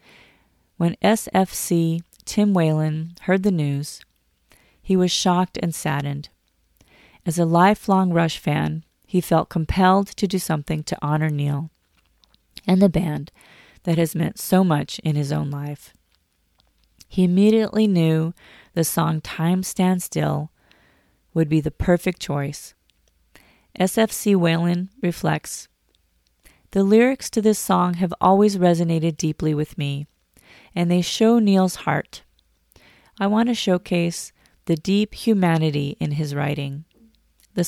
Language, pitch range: English, 150-185 Hz